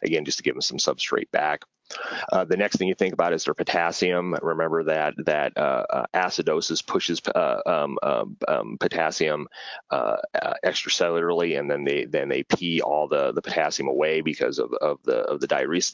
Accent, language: American, Italian